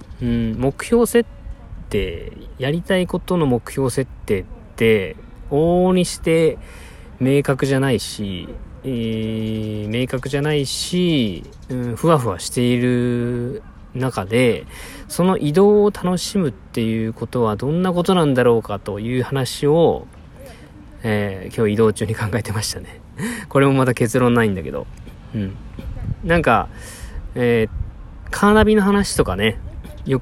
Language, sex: Japanese, male